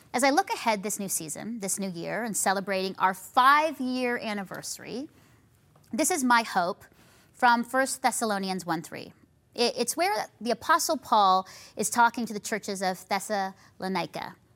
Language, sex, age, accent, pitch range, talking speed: English, female, 30-49, American, 185-250 Hz, 145 wpm